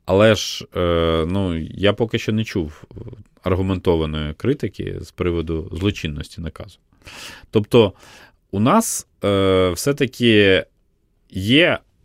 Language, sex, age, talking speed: Ukrainian, male, 30-49, 100 wpm